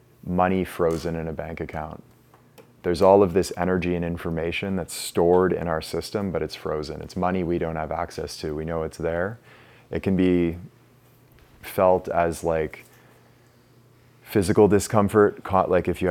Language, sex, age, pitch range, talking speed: English, male, 30-49, 80-95 Hz, 160 wpm